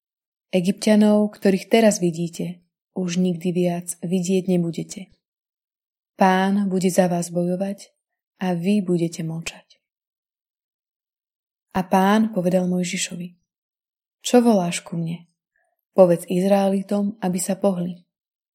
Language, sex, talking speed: Slovak, female, 100 wpm